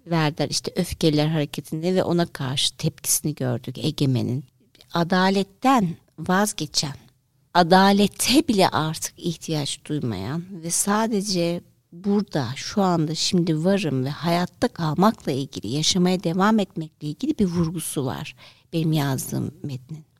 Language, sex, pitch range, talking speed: Turkish, female, 160-220 Hz, 115 wpm